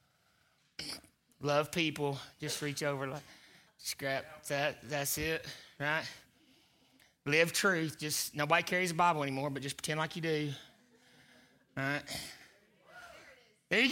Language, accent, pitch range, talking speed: English, American, 150-235 Hz, 120 wpm